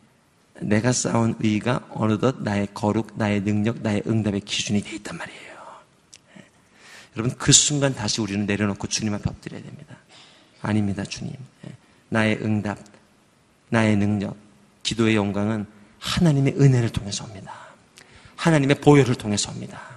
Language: Korean